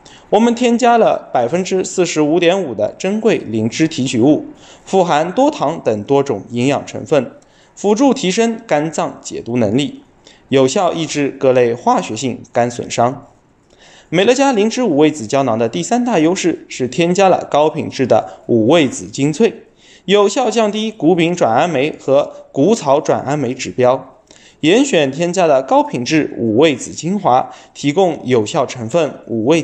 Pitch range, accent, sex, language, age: 130-210 Hz, native, male, Chinese, 20-39